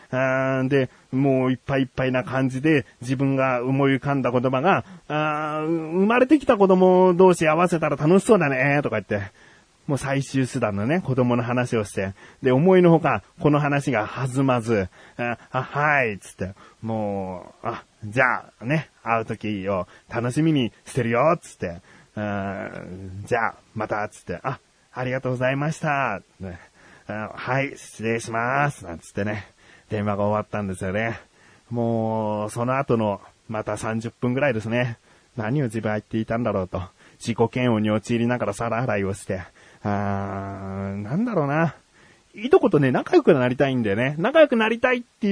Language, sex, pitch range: Japanese, male, 110-175 Hz